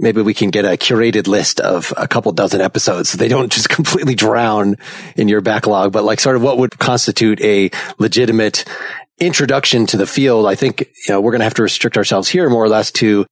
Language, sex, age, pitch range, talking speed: English, male, 30-49, 105-130 Hz, 220 wpm